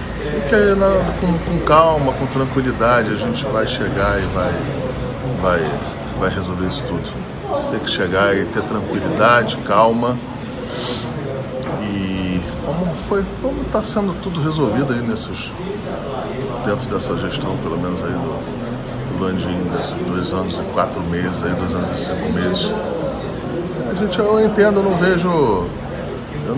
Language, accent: Portuguese, Brazilian